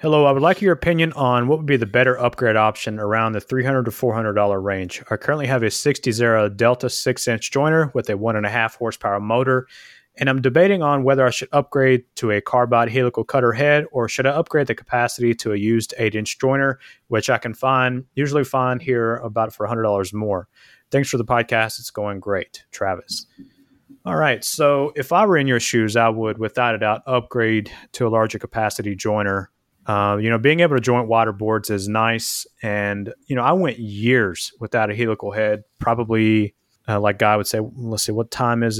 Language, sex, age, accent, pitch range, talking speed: English, male, 30-49, American, 105-130 Hz, 200 wpm